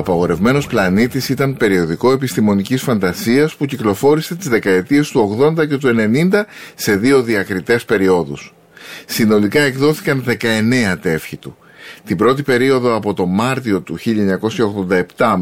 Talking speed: 125 wpm